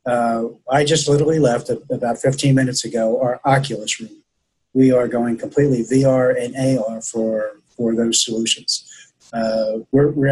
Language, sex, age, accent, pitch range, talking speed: English, male, 30-49, American, 120-140 Hz, 155 wpm